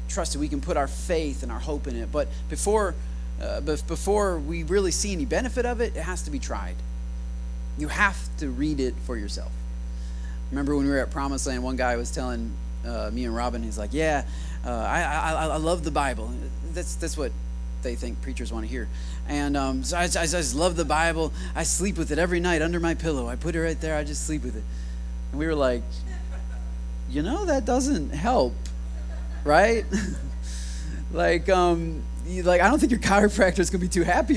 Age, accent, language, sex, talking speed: 30-49, American, English, male, 210 wpm